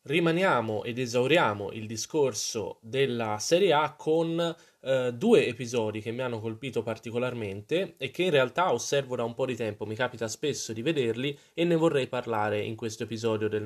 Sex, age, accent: male, 20-39, native